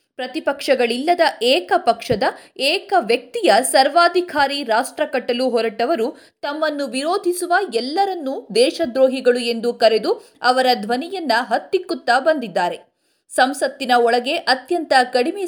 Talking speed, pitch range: 90 wpm, 245-340 Hz